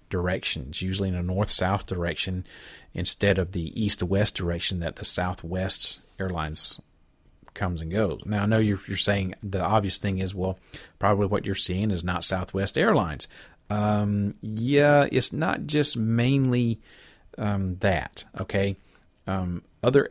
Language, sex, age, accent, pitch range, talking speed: English, male, 40-59, American, 90-105 Hz, 150 wpm